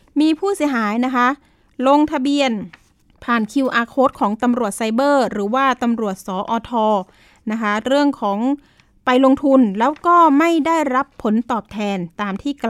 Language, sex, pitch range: Thai, female, 220-280 Hz